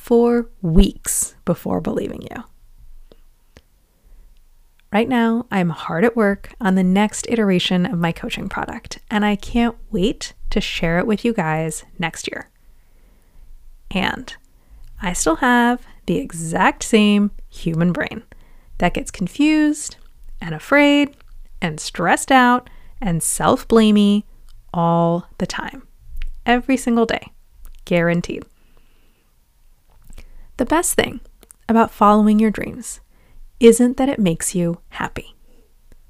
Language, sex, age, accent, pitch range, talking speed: English, female, 30-49, American, 180-245 Hz, 115 wpm